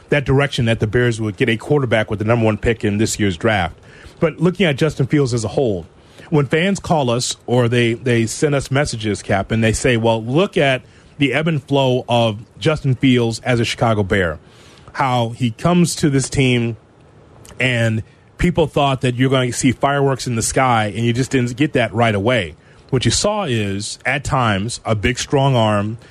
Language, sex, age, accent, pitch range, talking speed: English, male, 30-49, American, 115-140 Hz, 205 wpm